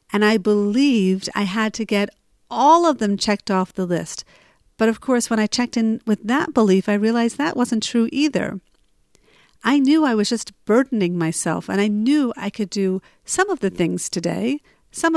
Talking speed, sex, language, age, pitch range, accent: 195 wpm, female, English, 50-69, 185-235 Hz, American